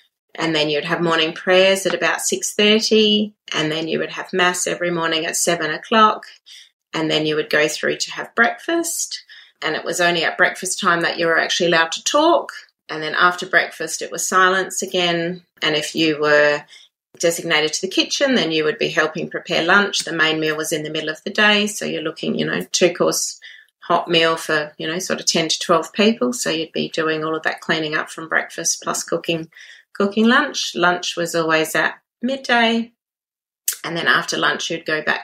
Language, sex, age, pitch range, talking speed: English, female, 30-49, 155-210 Hz, 205 wpm